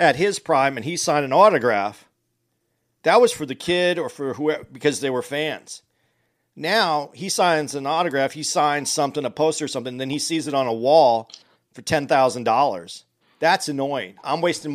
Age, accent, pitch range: 40-59, American, 140-175 Hz